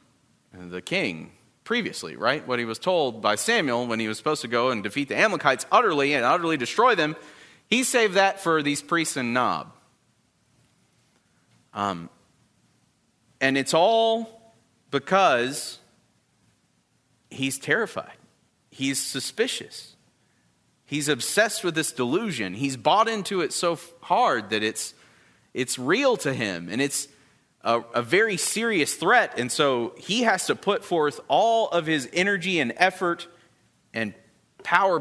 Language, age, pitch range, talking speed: English, 40-59, 125-185 Hz, 140 wpm